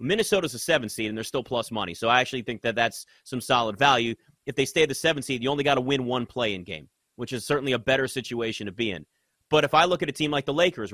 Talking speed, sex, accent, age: 290 wpm, male, American, 30-49